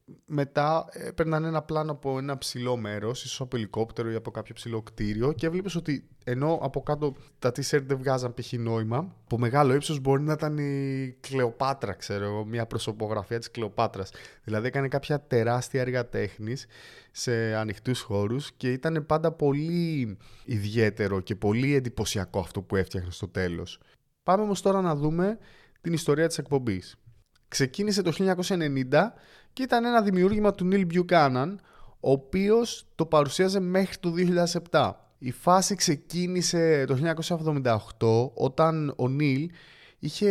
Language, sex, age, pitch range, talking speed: Greek, male, 20-39, 115-165 Hz, 145 wpm